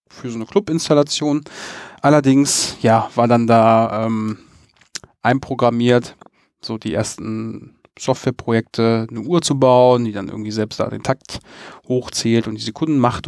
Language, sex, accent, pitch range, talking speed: German, male, German, 115-140 Hz, 140 wpm